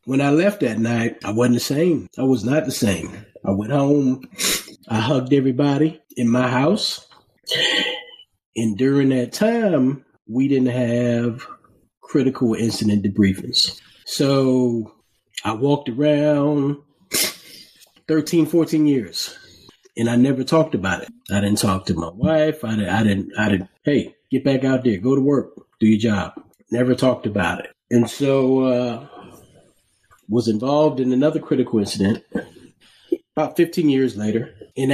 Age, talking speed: 30-49, 150 wpm